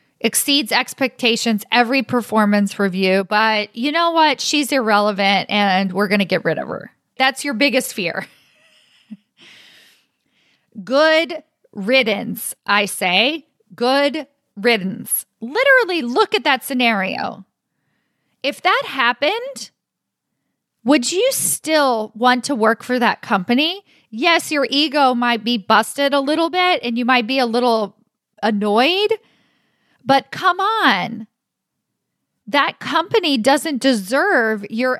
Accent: American